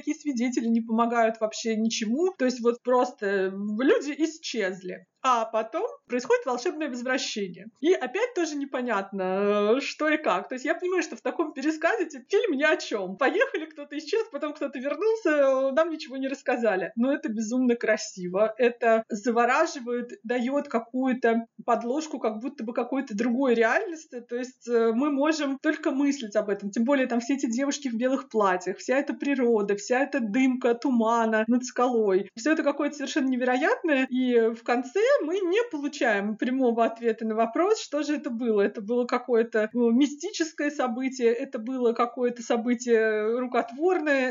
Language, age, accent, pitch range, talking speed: Russian, 30-49, native, 230-290 Hz, 160 wpm